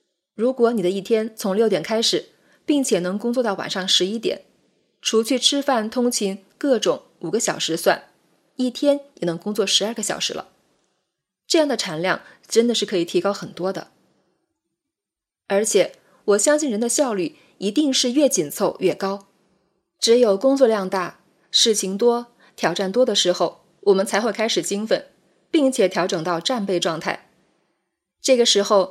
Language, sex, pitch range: Chinese, female, 185-255 Hz